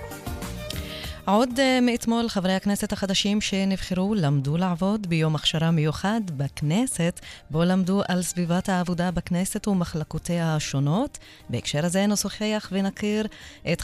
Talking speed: 110 wpm